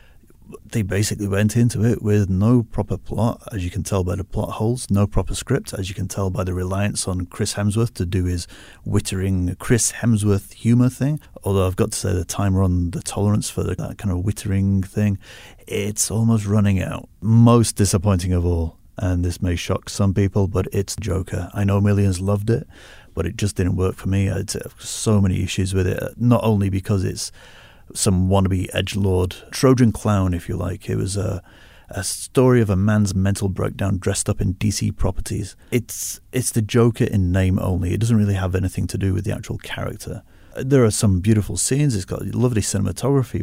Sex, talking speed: male, 200 wpm